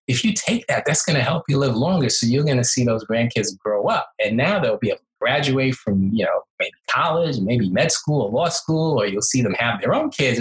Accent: American